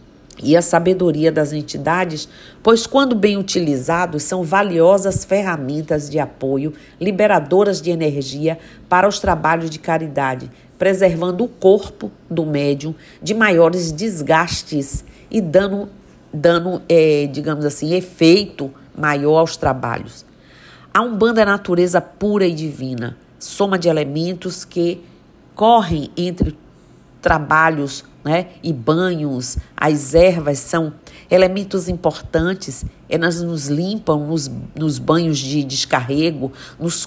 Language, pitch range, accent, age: Portuguese, 150-180 Hz, Brazilian, 50-69